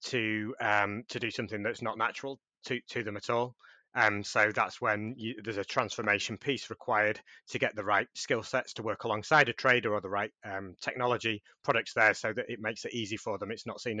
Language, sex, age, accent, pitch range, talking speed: English, male, 30-49, British, 105-135 Hz, 240 wpm